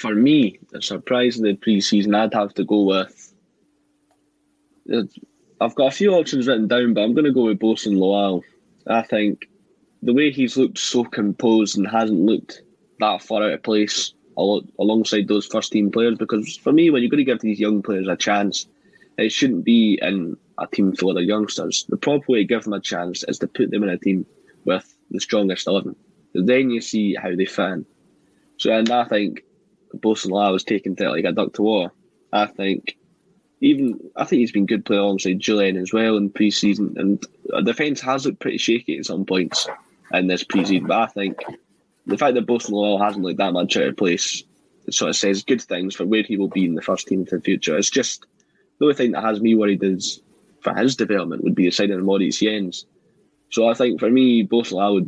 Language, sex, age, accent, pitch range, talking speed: English, male, 10-29, British, 100-120 Hz, 215 wpm